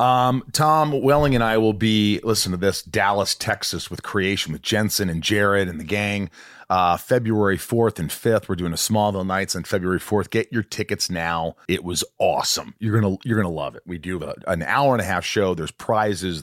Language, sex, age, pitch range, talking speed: English, male, 40-59, 85-110 Hz, 220 wpm